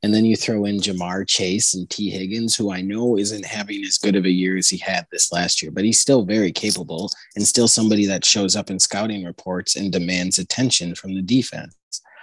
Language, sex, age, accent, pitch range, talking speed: English, male, 30-49, American, 90-105 Hz, 225 wpm